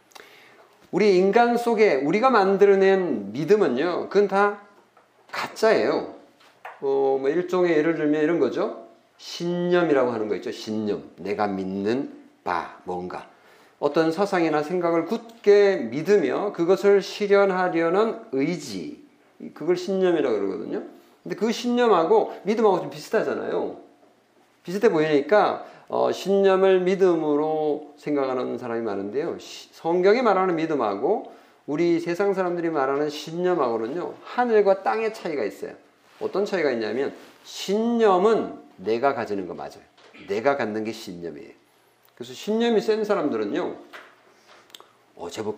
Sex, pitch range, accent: male, 150-215 Hz, native